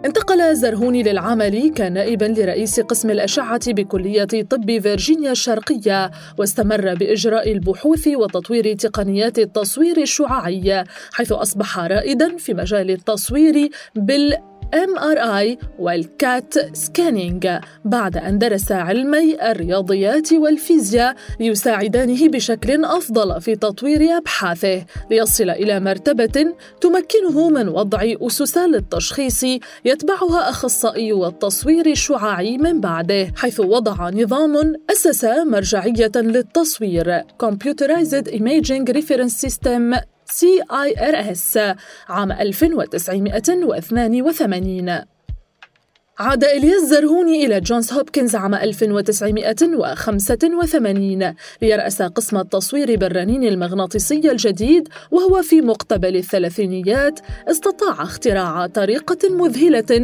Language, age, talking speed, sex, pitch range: Arabic, 20-39, 90 wpm, female, 205-295 Hz